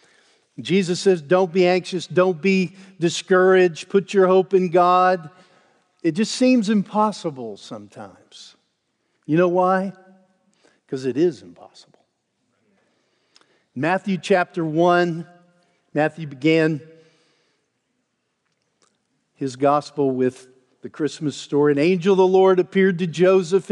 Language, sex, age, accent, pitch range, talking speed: English, male, 50-69, American, 160-195 Hz, 110 wpm